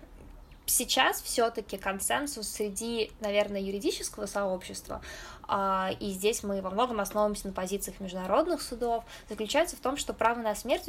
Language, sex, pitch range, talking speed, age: Russian, female, 200-245 Hz, 130 wpm, 20-39